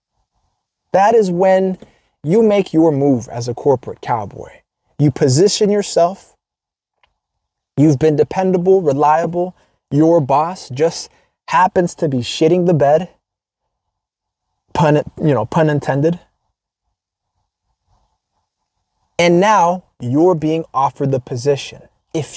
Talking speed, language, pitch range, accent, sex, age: 105 wpm, English, 130-175 Hz, American, male, 20-39